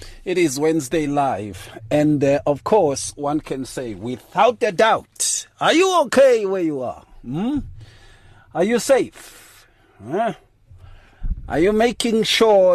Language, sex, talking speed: English, male, 130 wpm